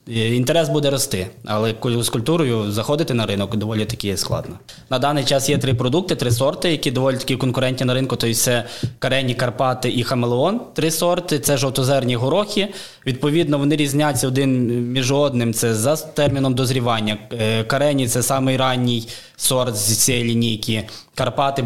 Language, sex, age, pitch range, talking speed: Ukrainian, male, 20-39, 115-135 Hz, 160 wpm